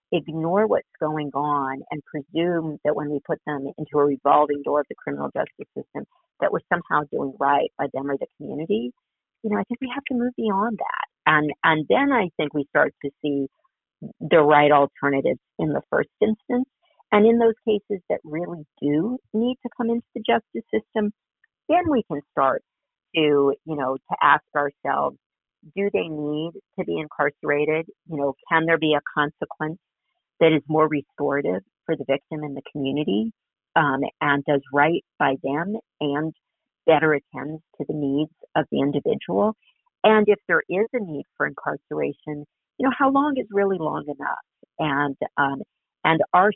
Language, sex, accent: English, female, American